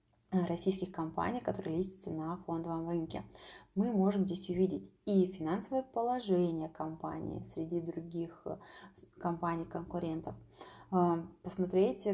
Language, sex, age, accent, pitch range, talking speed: Russian, female, 20-39, native, 170-200 Hz, 95 wpm